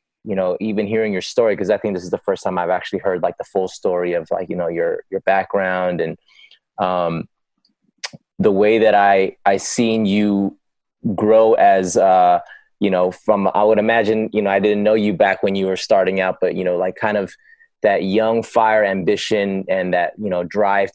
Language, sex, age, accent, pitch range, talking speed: English, male, 20-39, American, 95-110 Hz, 210 wpm